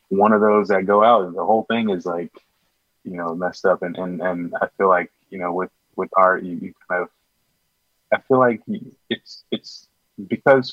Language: English